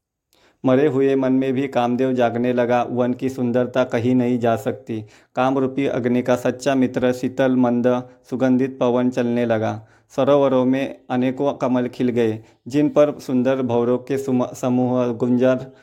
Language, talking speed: Hindi, 150 wpm